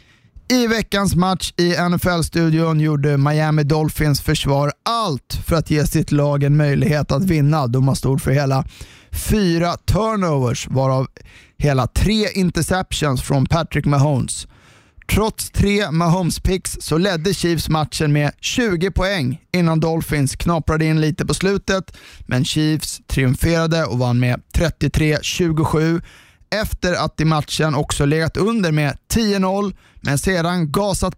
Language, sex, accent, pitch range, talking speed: Swedish, male, native, 145-175 Hz, 135 wpm